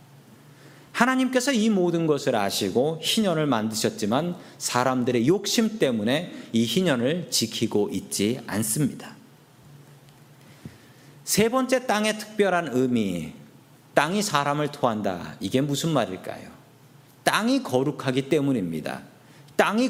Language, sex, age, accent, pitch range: Korean, male, 40-59, native, 125-185 Hz